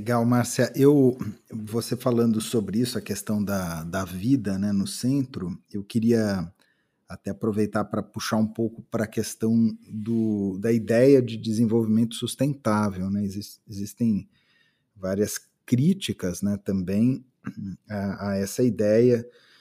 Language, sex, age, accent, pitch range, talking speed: Portuguese, male, 40-59, Brazilian, 100-115 Hz, 120 wpm